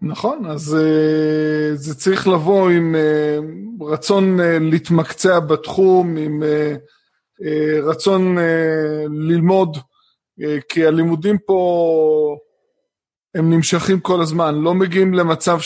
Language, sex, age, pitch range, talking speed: Hebrew, male, 20-39, 155-185 Hz, 85 wpm